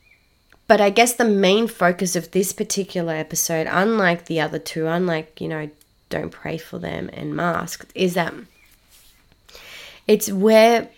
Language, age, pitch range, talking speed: English, 20-39, 165-195 Hz, 150 wpm